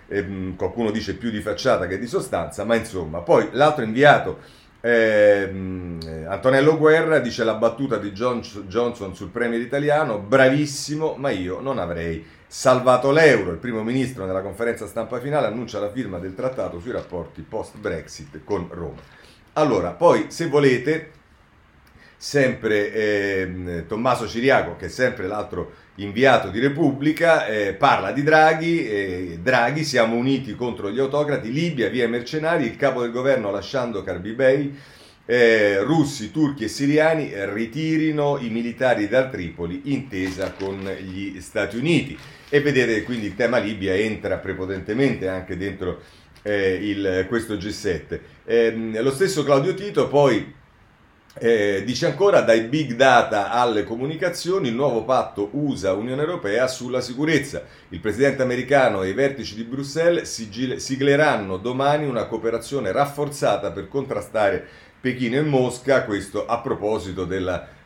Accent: native